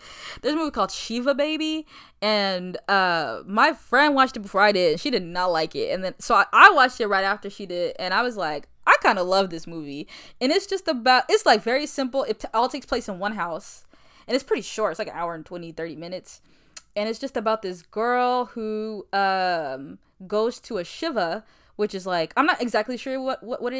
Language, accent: English, American